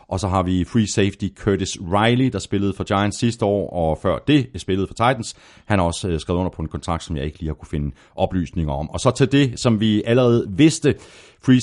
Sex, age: male, 40-59